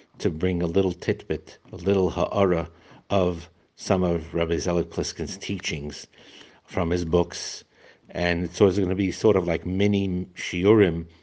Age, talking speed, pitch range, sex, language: 60-79, 150 wpm, 80-95 Hz, male, English